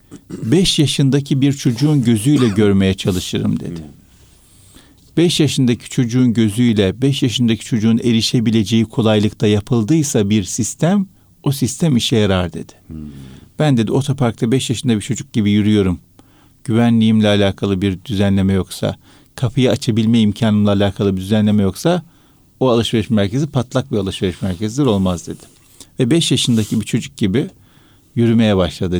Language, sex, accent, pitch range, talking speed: Turkish, male, native, 100-130 Hz, 130 wpm